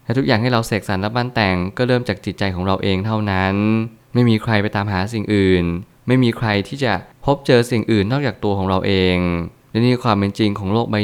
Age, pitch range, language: 20-39, 95-115 Hz, Thai